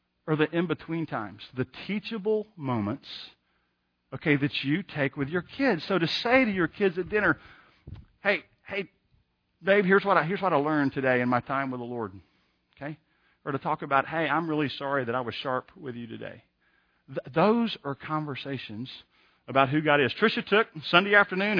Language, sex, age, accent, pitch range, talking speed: English, male, 50-69, American, 125-180 Hz, 185 wpm